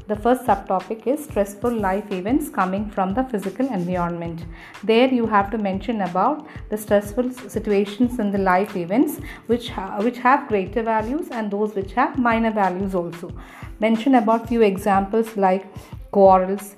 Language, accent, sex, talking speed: English, Indian, female, 155 wpm